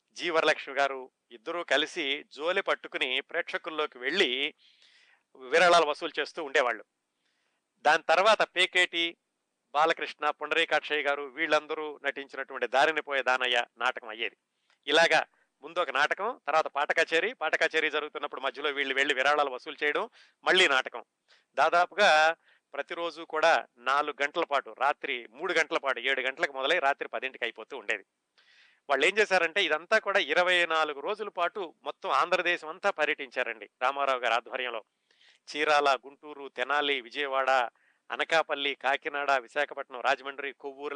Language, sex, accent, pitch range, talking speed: Telugu, male, native, 135-165 Hz, 120 wpm